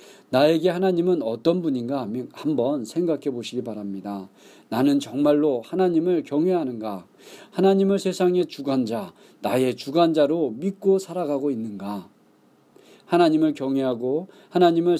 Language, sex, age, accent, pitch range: Korean, male, 40-59, native, 125-185 Hz